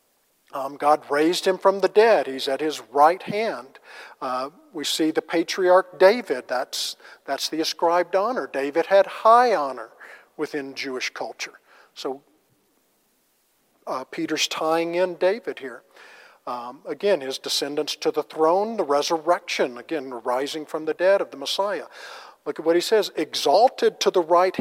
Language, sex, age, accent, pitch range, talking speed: English, male, 50-69, American, 150-190 Hz, 155 wpm